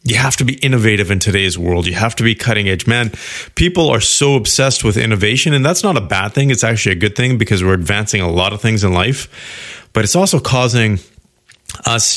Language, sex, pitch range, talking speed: English, male, 100-130 Hz, 225 wpm